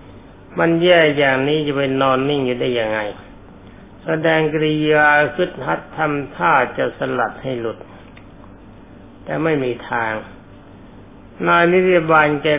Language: Thai